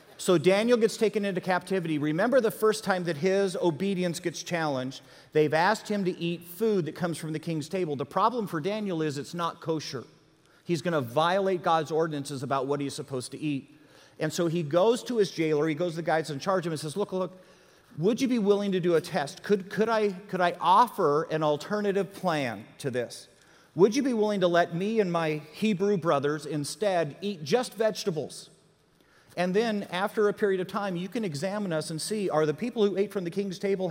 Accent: American